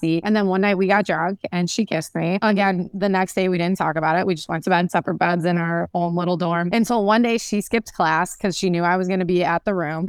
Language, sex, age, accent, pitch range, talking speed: English, female, 20-39, American, 170-215 Hz, 305 wpm